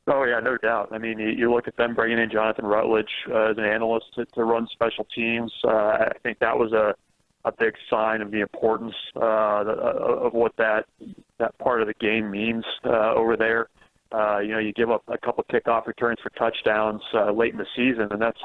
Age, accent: 30-49, American